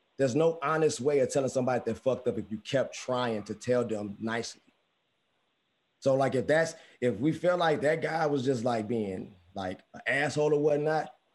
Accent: American